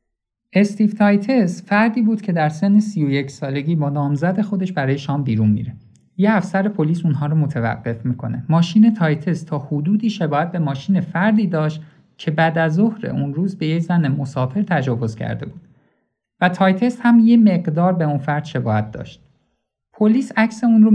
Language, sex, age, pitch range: Persian, male, 50-69, 140-195 Hz